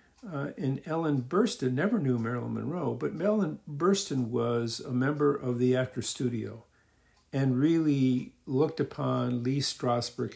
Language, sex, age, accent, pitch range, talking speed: English, male, 50-69, American, 120-140 Hz, 140 wpm